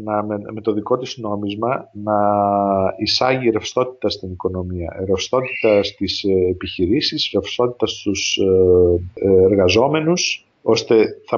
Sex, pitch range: male, 105-145 Hz